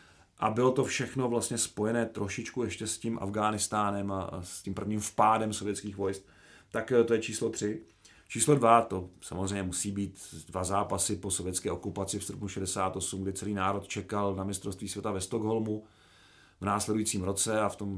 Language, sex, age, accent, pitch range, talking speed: Czech, male, 40-59, native, 100-115 Hz, 175 wpm